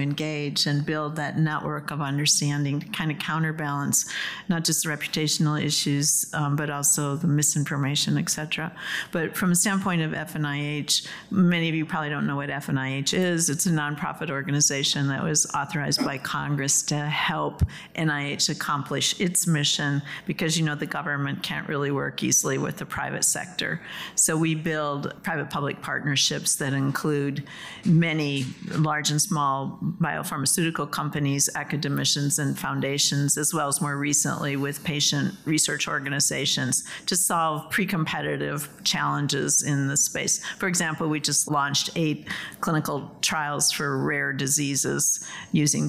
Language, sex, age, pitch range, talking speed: English, female, 50-69, 145-165 Hz, 145 wpm